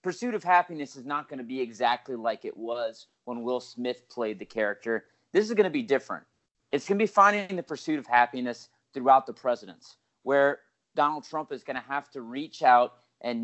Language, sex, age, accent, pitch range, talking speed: English, male, 30-49, American, 120-145 Hz, 210 wpm